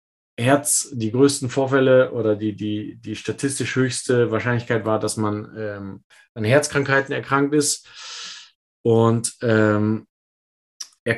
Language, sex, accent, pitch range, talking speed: German, male, German, 115-140 Hz, 120 wpm